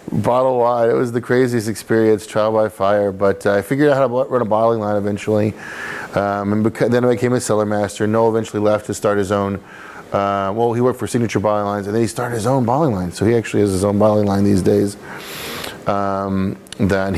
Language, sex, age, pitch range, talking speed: English, male, 30-49, 95-110 Hz, 230 wpm